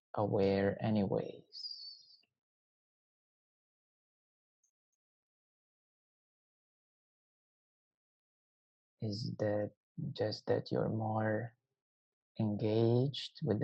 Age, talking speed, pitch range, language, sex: 30-49, 45 wpm, 105-145 Hz, English, male